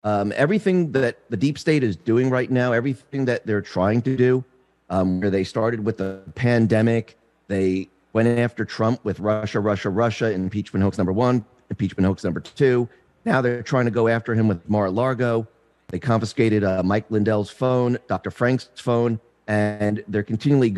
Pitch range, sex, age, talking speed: 105-140 Hz, male, 40-59, 175 wpm